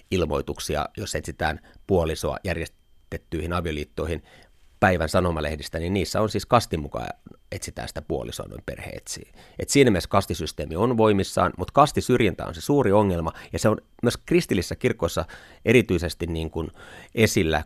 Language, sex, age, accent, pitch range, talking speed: Finnish, male, 30-49, native, 85-105 Hz, 135 wpm